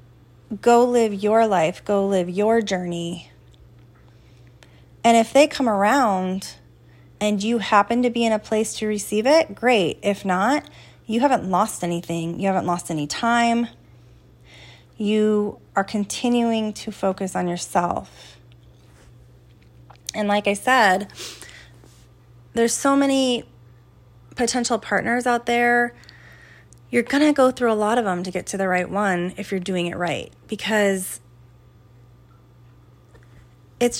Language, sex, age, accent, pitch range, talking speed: English, female, 30-49, American, 170-230 Hz, 135 wpm